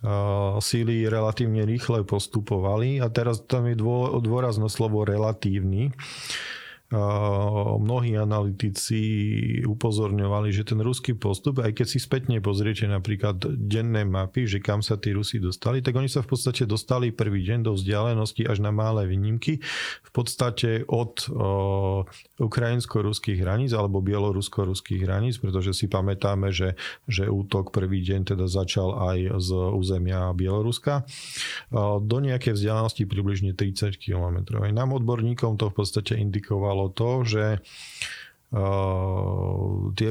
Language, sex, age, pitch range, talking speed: Slovak, male, 40-59, 100-120 Hz, 130 wpm